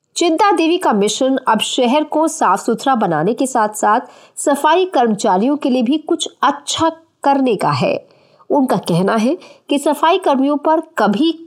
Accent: native